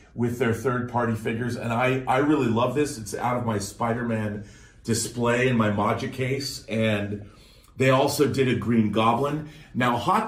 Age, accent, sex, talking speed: 40-59, American, male, 170 wpm